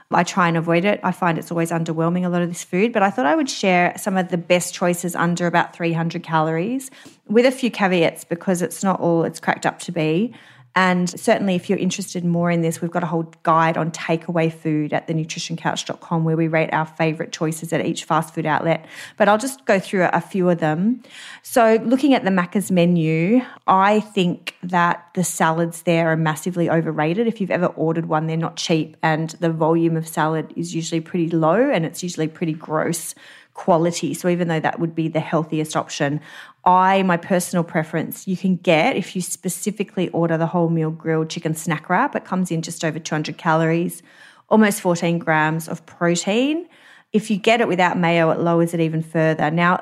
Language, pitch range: English, 160-185 Hz